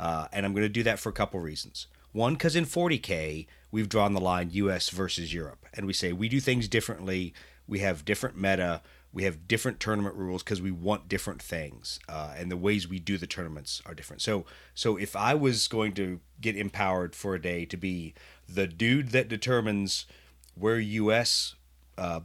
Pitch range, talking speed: 85-115 Hz, 200 wpm